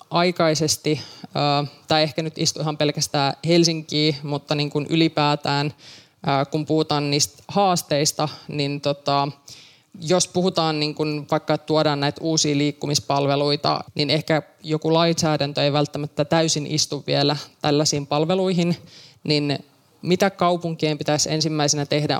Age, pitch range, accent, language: 20-39, 145-160 Hz, native, Finnish